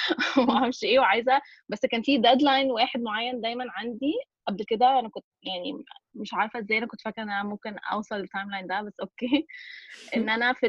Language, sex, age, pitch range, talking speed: Arabic, female, 20-39, 210-285 Hz, 200 wpm